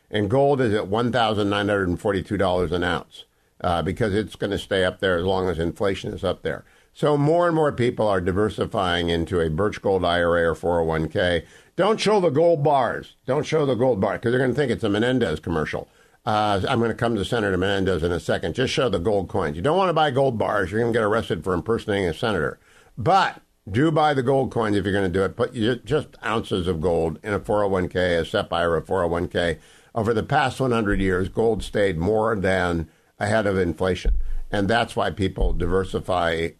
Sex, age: male, 50-69